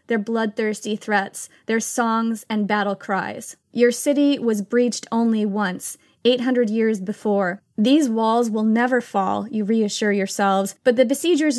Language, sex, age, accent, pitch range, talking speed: English, female, 20-39, American, 210-245 Hz, 145 wpm